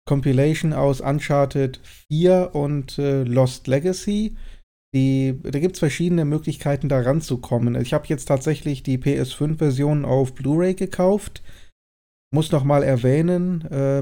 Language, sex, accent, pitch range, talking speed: German, male, German, 130-155 Hz, 130 wpm